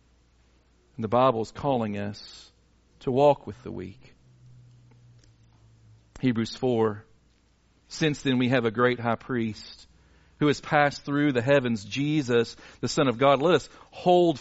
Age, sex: 40-59, male